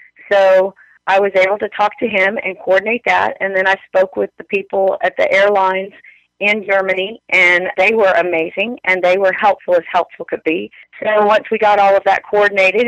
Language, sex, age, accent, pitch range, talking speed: English, female, 40-59, American, 175-200 Hz, 200 wpm